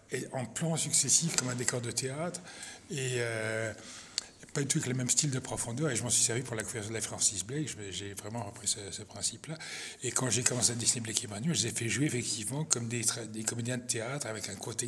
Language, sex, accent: French, male, French